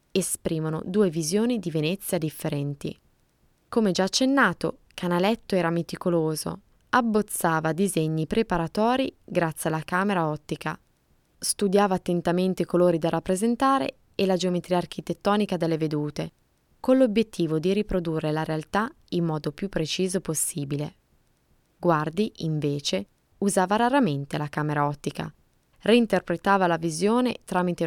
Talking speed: 115 wpm